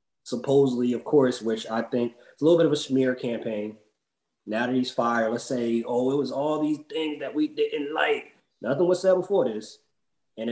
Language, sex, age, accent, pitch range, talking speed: English, male, 20-39, American, 105-135 Hz, 205 wpm